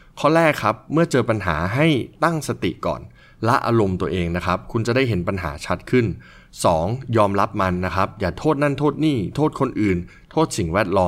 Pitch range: 90-120 Hz